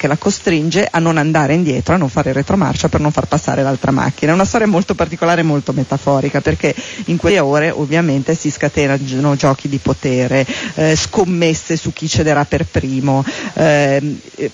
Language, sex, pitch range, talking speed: Italian, female, 140-165 Hz, 180 wpm